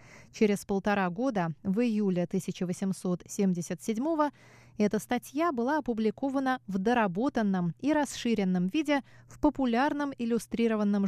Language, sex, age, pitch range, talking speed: Russian, female, 20-39, 190-250 Hz, 105 wpm